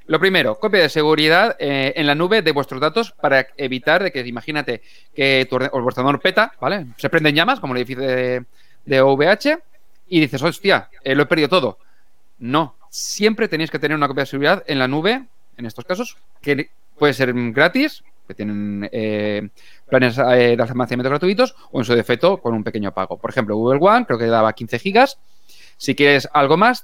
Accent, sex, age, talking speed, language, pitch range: Spanish, male, 30-49, 190 wpm, Spanish, 120-155 Hz